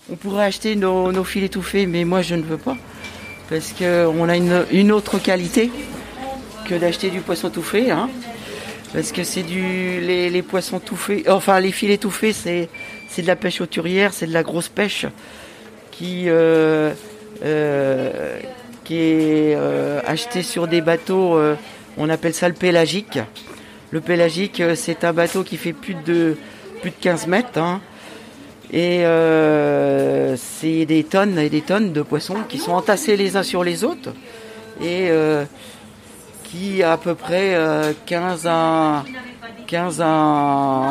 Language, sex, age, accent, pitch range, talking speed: French, male, 40-59, French, 160-195 Hz, 160 wpm